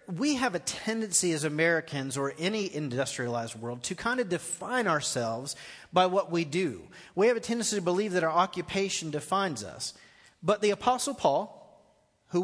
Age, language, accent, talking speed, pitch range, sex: 40-59, English, American, 170 wpm, 170-220 Hz, male